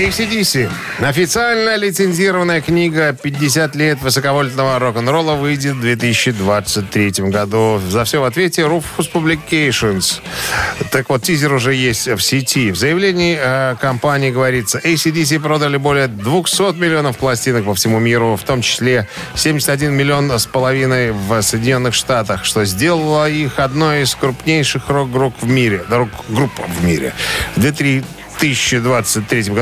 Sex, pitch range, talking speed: male, 110-150 Hz, 120 wpm